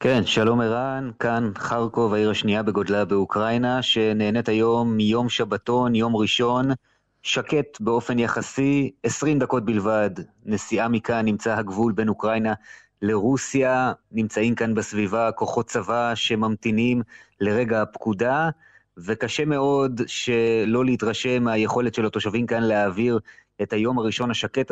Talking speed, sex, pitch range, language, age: 120 wpm, male, 110-125 Hz, Hebrew, 30-49